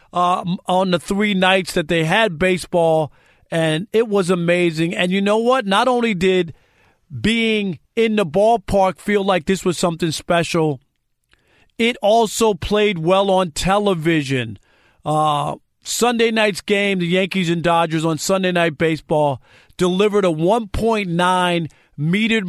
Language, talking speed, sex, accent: English, 140 wpm, male, American